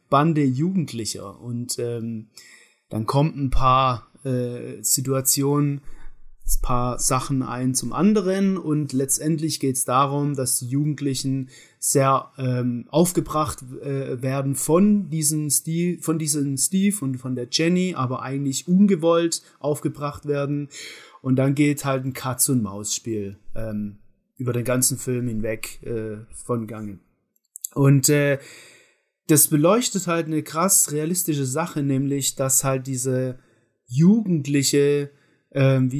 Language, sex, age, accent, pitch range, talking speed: German, male, 30-49, German, 130-155 Hz, 125 wpm